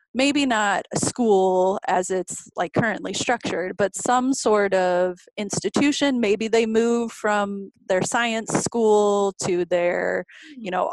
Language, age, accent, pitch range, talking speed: English, 30-49, American, 185-230 Hz, 135 wpm